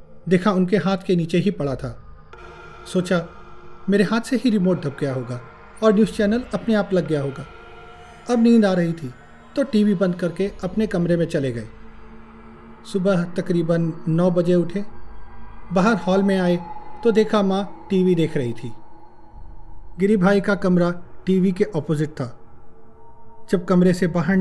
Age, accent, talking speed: 40-59, native, 165 wpm